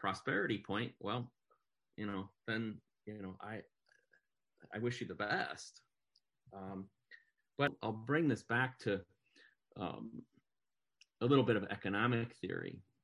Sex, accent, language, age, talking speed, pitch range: male, American, English, 40-59, 130 wpm, 100-130 Hz